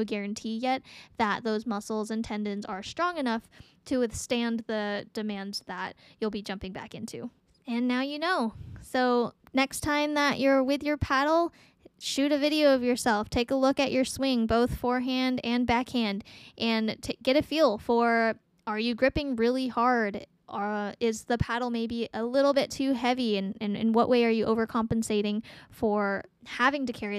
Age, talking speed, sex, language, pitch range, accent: 10-29, 175 wpm, female, English, 220-265 Hz, American